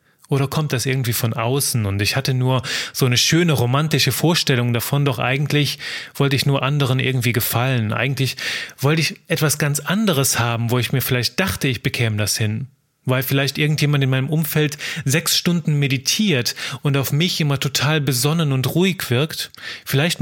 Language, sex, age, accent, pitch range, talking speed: German, male, 30-49, German, 125-160 Hz, 175 wpm